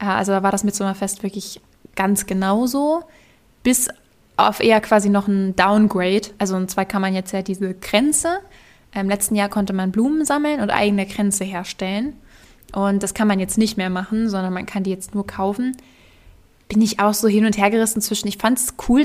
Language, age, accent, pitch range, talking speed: German, 10-29, German, 195-220 Hz, 200 wpm